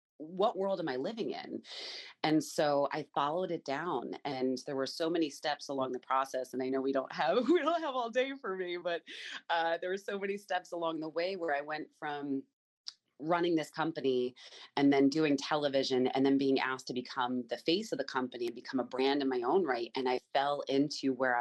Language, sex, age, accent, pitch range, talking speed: English, female, 30-49, American, 130-165 Hz, 220 wpm